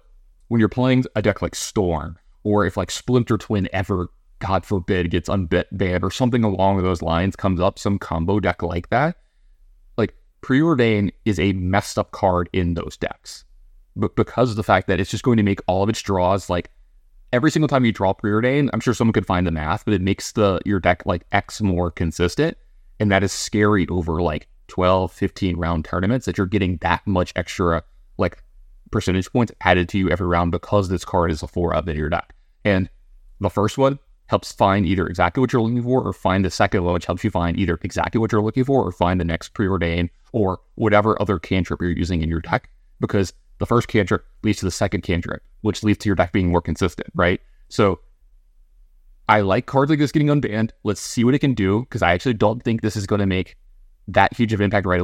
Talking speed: 220 wpm